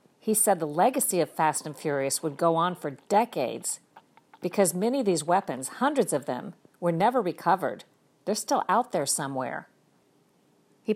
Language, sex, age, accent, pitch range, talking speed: English, female, 50-69, American, 150-190 Hz, 165 wpm